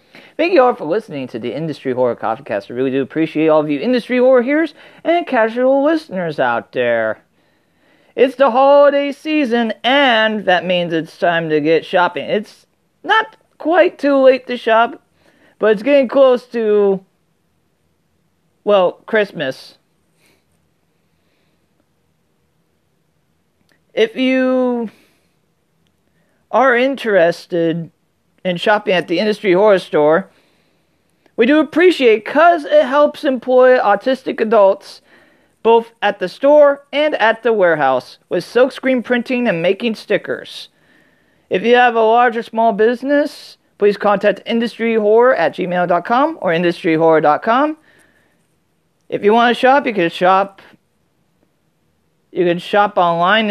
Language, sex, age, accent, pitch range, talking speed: English, male, 40-59, American, 180-275 Hz, 125 wpm